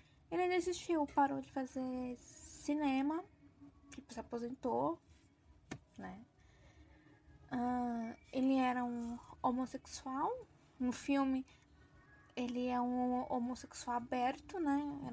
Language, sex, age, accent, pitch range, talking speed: Portuguese, female, 10-29, Brazilian, 245-285 Hz, 85 wpm